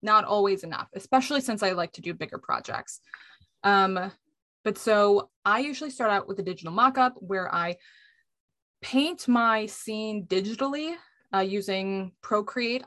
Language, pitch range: English, 190-245 Hz